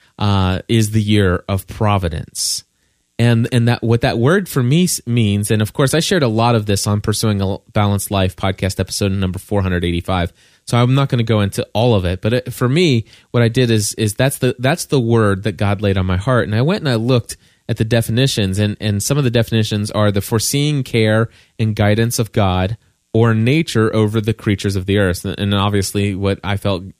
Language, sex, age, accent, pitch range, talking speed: English, male, 20-39, American, 100-125 Hz, 225 wpm